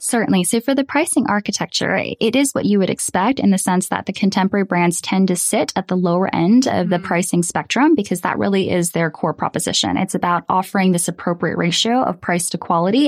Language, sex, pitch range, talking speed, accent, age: English, female, 175-225 Hz, 215 wpm, American, 10-29